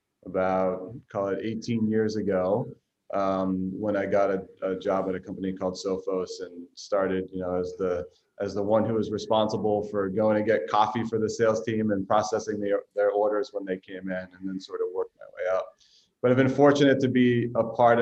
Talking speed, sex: 215 wpm, male